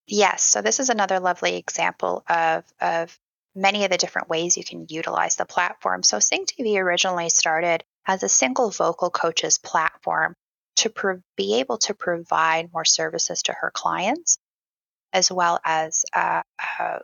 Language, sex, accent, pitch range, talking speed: English, female, American, 165-195 Hz, 160 wpm